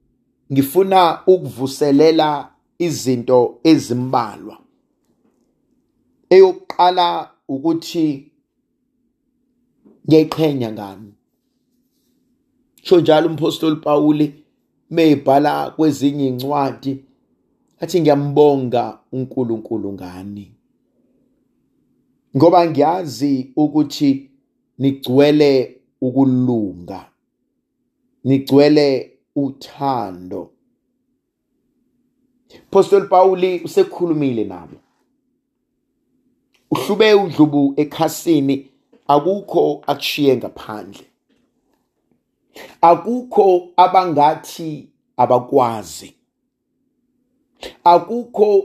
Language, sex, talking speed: English, male, 50 wpm